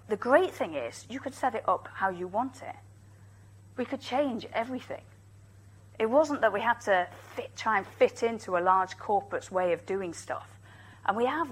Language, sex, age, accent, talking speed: English, female, 40-59, British, 200 wpm